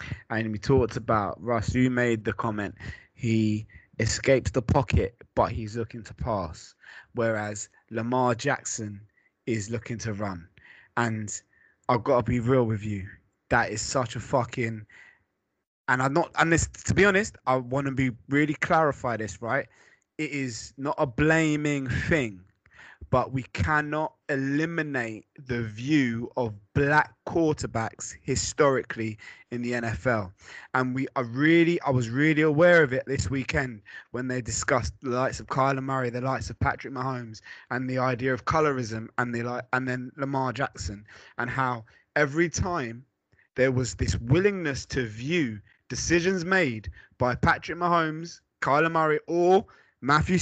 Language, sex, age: English, male, 20-39